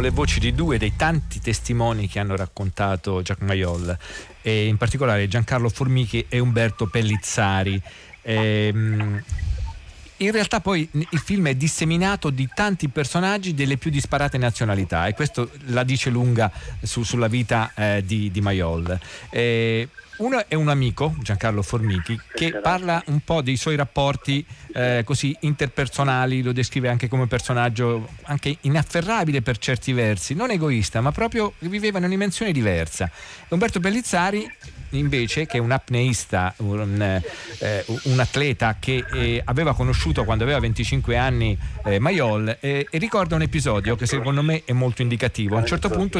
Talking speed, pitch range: 155 wpm, 110-145 Hz